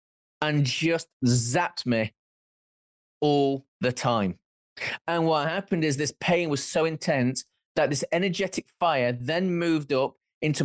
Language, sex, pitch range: English, male, 130-165 Hz